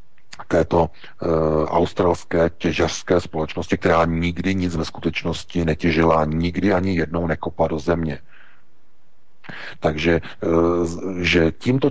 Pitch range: 85-100 Hz